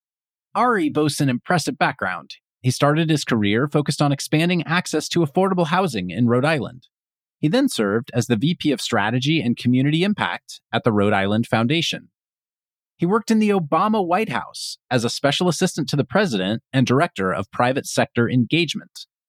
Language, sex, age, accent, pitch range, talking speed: English, male, 30-49, American, 115-165 Hz, 170 wpm